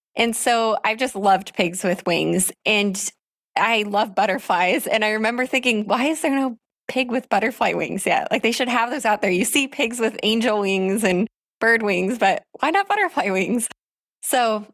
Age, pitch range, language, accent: 20-39, 190-240 Hz, English, American